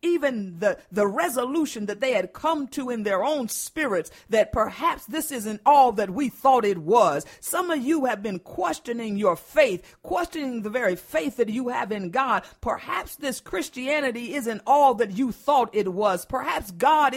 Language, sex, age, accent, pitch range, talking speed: English, female, 50-69, American, 220-300 Hz, 180 wpm